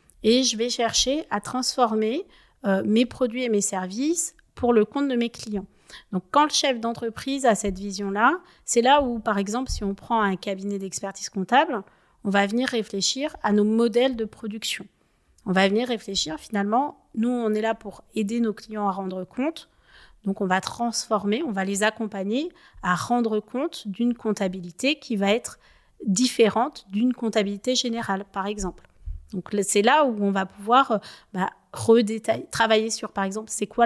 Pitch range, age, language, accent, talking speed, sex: 200-240 Hz, 40-59, French, French, 175 wpm, female